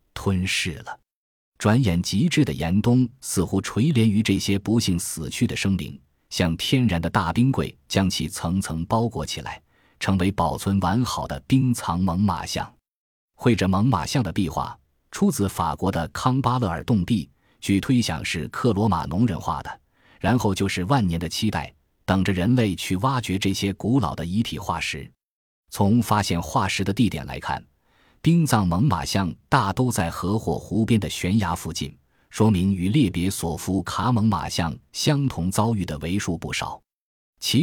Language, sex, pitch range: Chinese, male, 85-115 Hz